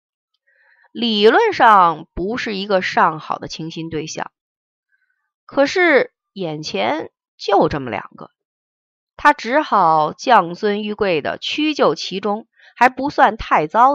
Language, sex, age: Chinese, female, 30-49